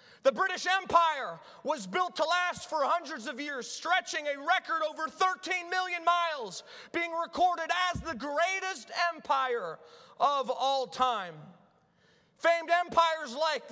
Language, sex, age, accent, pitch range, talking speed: English, male, 30-49, American, 245-340 Hz, 130 wpm